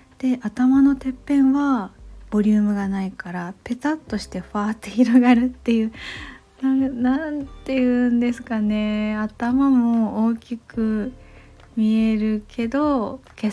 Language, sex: Japanese, female